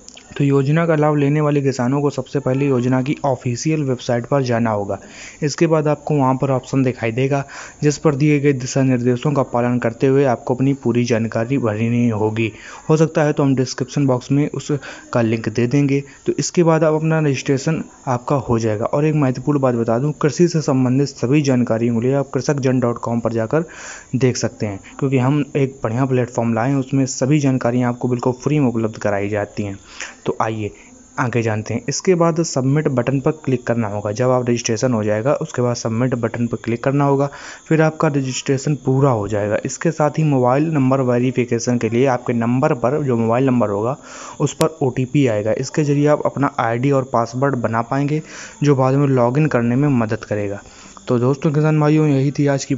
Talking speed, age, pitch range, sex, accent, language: 195 wpm, 20-39, 120-145 Hz, male, native, Hindi